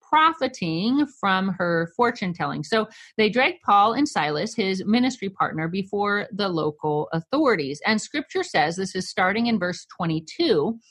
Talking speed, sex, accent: 150 wpm, female, American